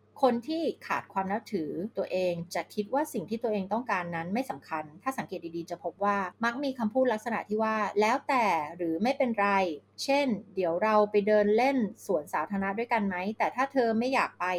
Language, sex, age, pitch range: Thai, female, 30-49, 180-230 Hz